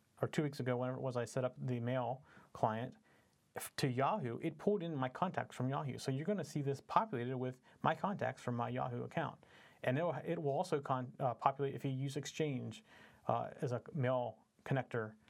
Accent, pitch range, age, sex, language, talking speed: American, 120-145 Hz, 40-59, male, English, 205 wpm